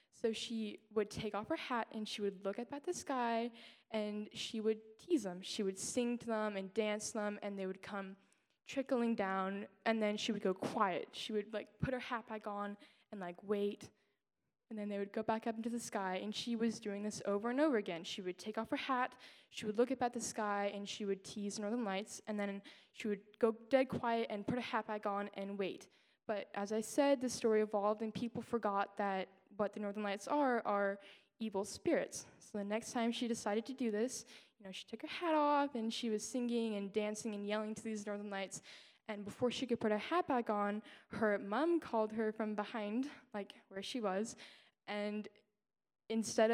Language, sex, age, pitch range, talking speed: English, female, 10-29, 205-235 Hz, 225 wpm